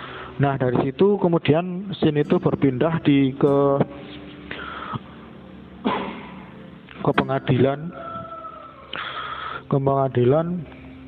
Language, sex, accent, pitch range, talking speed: Indonesian, male, native, 130-160 Hz, 70 wpm